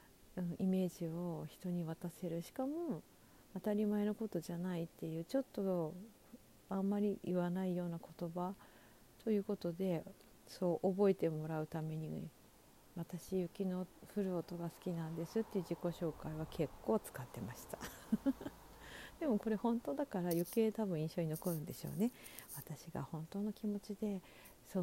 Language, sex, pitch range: Japanese, female, 160-205 Hz